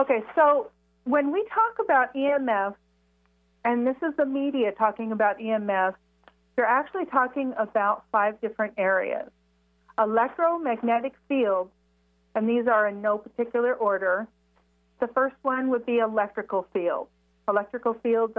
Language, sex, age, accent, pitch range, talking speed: English, female, 40-59, American, 195-235 Hz, 130 wpm